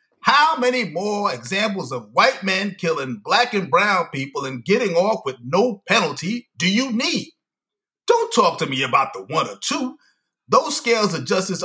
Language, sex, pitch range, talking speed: English, male, 165-220 Hz, 175 wpm